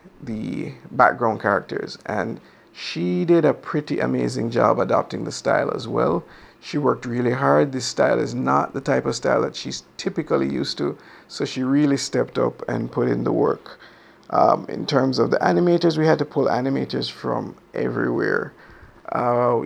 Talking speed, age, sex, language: 170 wpm, 50-69, male, English